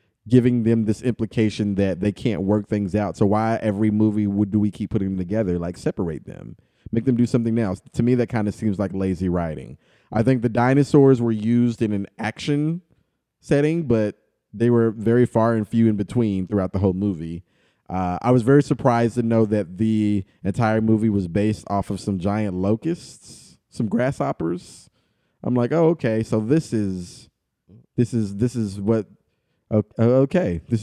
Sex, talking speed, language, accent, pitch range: male, 185 wpm, English, American, 105-130 Hz